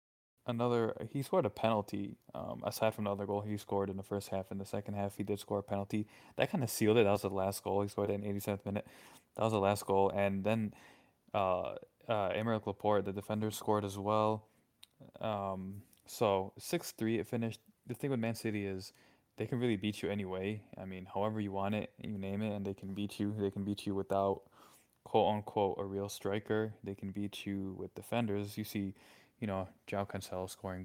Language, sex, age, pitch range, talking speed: English, male, 20-39, 100-110 Hz, 220 wpm